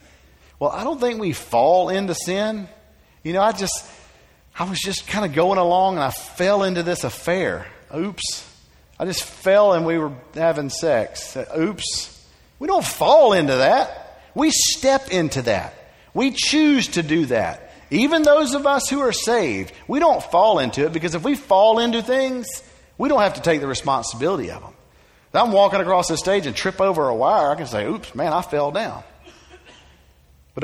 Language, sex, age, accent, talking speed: English, male, 50-69, American, 185 wpm